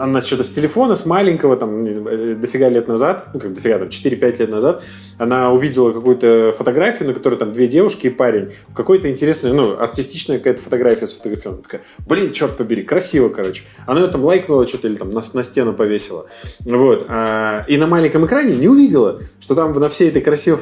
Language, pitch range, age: Russian, 115-155 Hz, 20-39